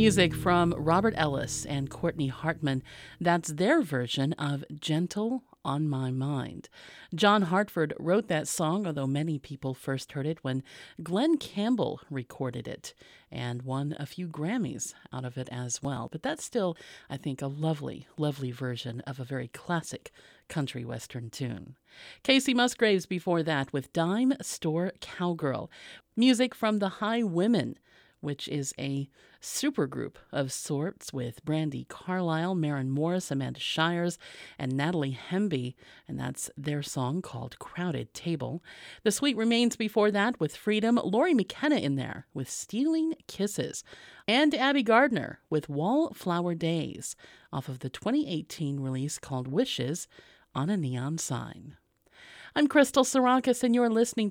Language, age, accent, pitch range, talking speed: English, 40-59, American, 140-210 Hz, 145 wpm